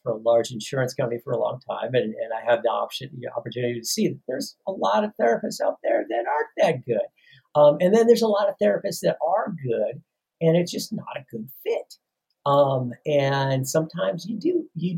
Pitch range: 125-180 Hz